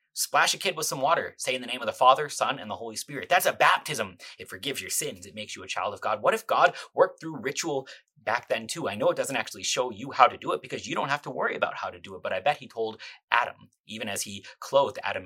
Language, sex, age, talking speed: English, male, 30-49, 290 wpm